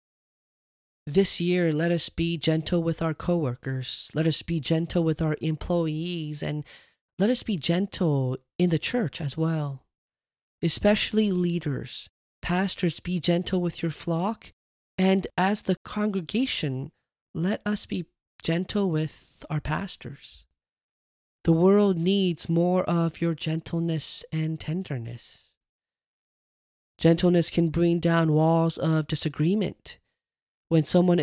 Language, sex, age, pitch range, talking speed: English, male, 20-39, 155-180 Hz, 125 wpm